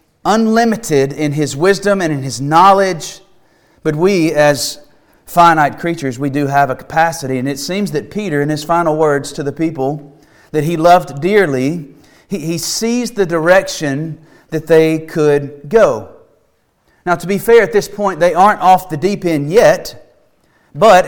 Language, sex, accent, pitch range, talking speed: English, male, American, 145-190 Hz, 165 wpm